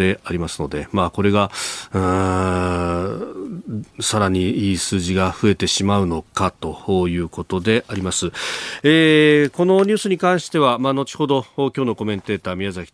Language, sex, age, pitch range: Japanese, male, 40-59, 90-125 Hz